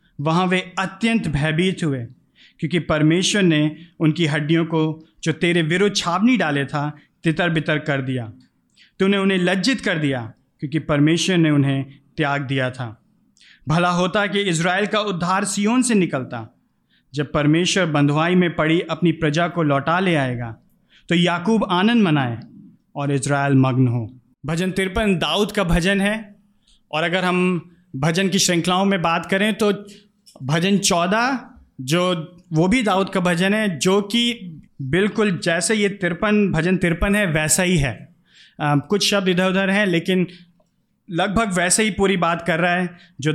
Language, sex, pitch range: Hindi, male, 155-195 Hz